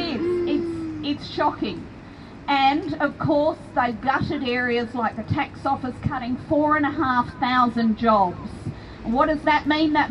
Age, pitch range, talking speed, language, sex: 40-59, 225-290 Hz, 140 wpm, English, female